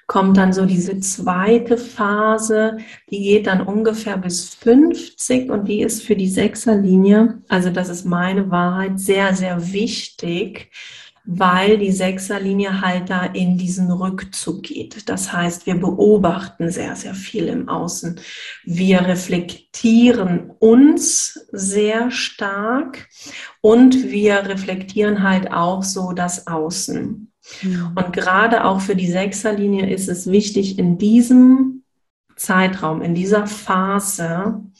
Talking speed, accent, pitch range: 125 wpm, German, 185-230 Hz